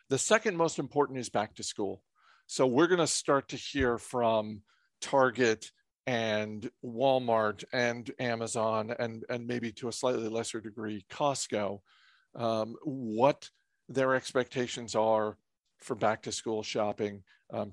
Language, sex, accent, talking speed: English, male, American, 135 wpm